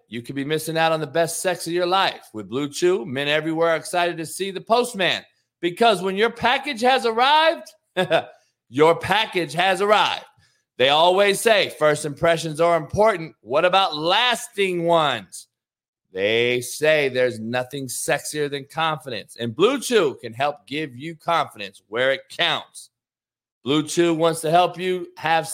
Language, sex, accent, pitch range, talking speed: English, male, American, 150-200 Hz, 160 wpm